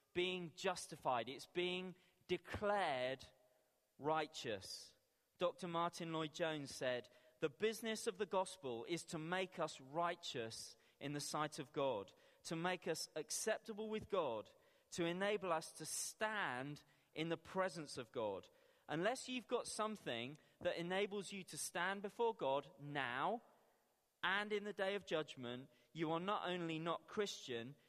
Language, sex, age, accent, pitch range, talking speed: English, male, 30-49, British, 150-200 Hz, 140 wpm